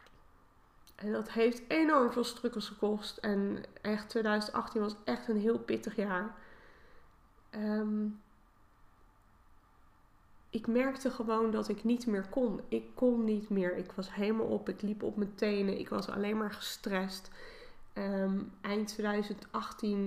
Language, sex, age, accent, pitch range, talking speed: Dutch, female, 20-39, Dutch, 195-230 Hz, 140 wpm